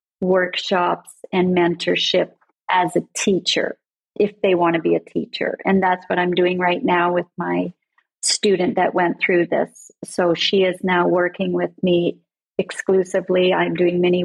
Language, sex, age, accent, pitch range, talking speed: English, female, 40-59, American, 175-200 Hz, 160 wpm